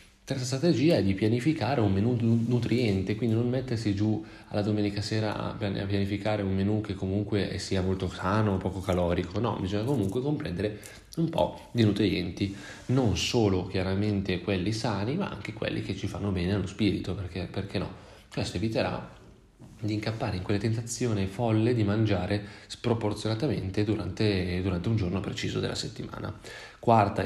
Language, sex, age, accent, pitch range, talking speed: Italian, male, 30-49, native, 95-110 Hz, 155 wpm